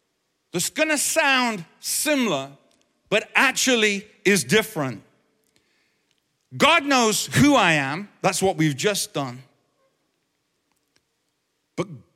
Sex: male